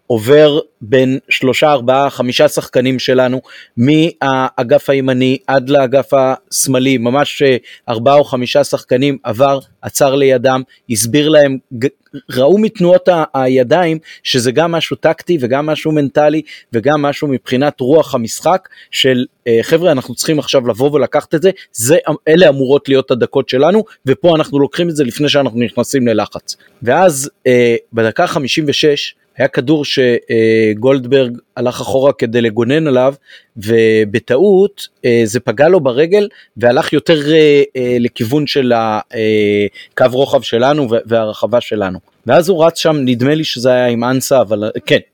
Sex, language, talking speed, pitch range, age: male, Hebrew, 130 wpm, 120-150 Hz, 30-49